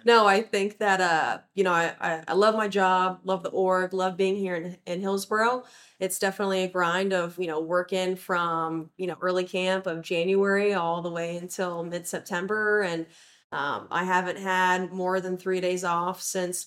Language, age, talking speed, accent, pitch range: English, 20-39, 185 wpm, American, 175-200 Hz